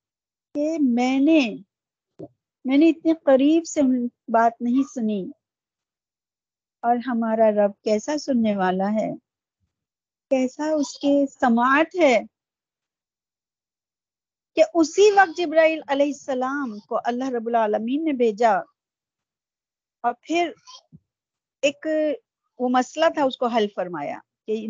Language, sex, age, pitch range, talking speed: Urdu, female, 50-69, 225-285 Hz, 110 wpm